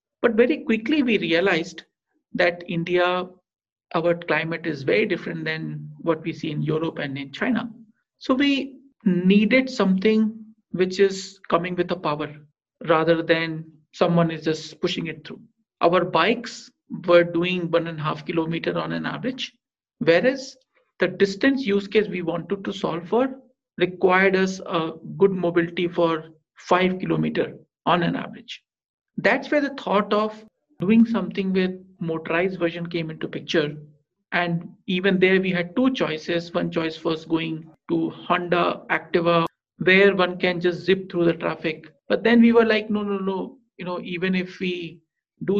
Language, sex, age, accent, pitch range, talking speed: English, male, 50-69, Indian, 165-215 Hz, 160 wpm